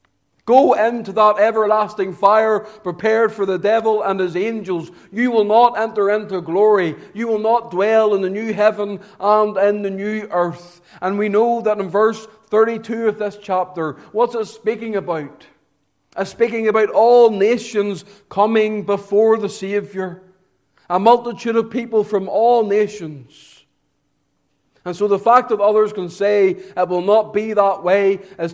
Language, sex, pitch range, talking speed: English, male, 150-215 Hz, 160 wpm